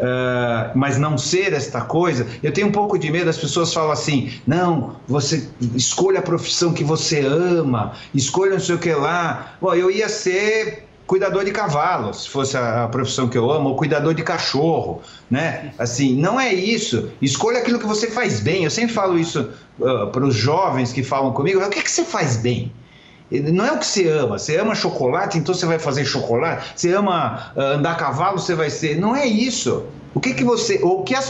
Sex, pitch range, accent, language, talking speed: male, 140-210 Hz, Brazilian, English, 200 wpm